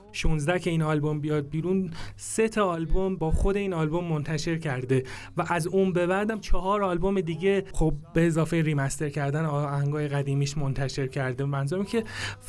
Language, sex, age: Persian, male, 30-49